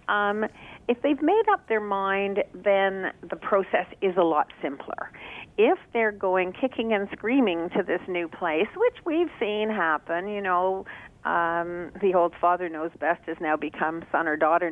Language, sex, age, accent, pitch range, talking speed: English, female, 50-69, American, 175-240 Hz, 170 wpm